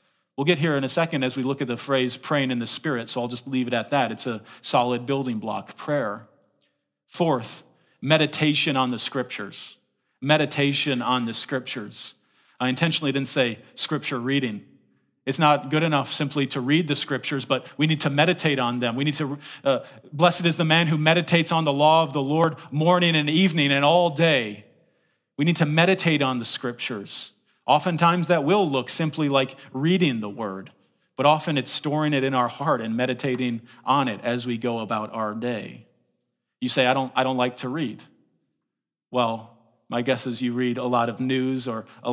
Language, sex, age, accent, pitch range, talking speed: English, male, 40-59, American, 120-150 Hz, 195 wpm